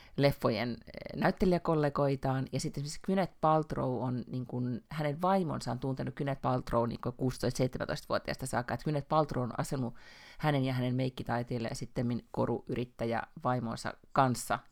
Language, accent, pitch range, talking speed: Finnish, native, 125-165 Hz, 120 wpm